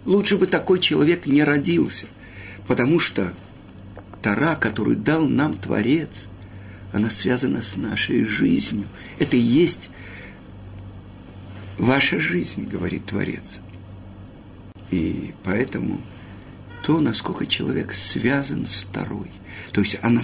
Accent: native